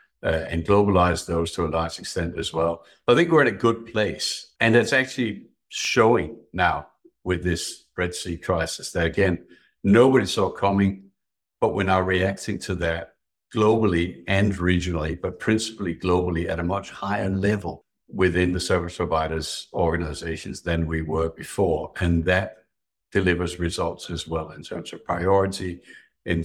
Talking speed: 155 wpm